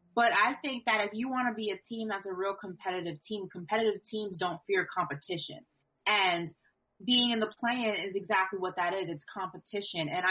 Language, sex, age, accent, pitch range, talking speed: English, female, 20-39, American, 185-230 Hz, 200 wpm